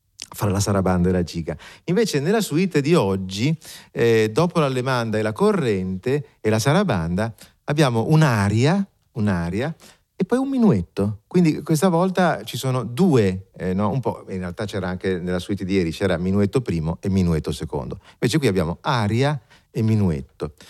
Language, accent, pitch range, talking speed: Italian, native, 95-140 Hz, 170 wpm